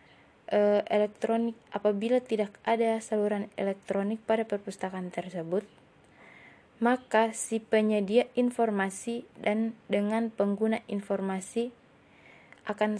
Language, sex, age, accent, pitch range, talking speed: Indonesian, female, 20-39, native, 200-225 Hz, 85 wpm